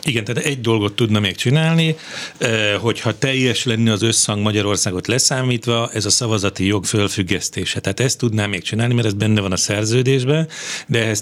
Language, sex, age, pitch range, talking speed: Hungarian, male, 40-59, 105-120 Hz, 170 wpm